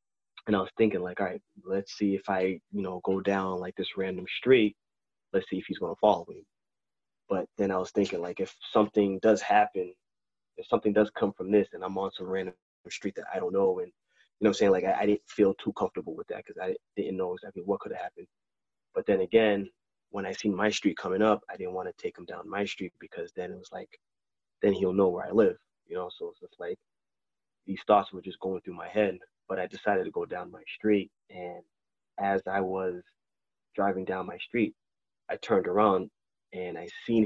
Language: English